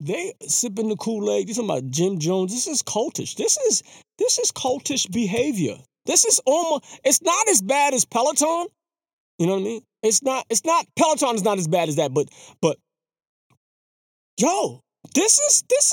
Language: English